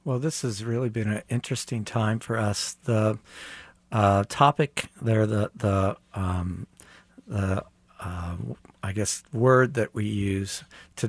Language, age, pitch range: English, 60-79, 95-115 Hz